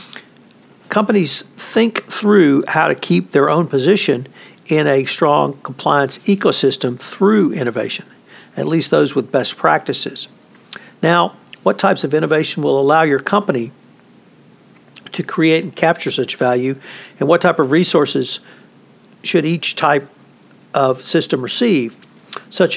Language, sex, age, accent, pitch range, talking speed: English, male, 60-79, American, 135-180 Hz, 130 wpm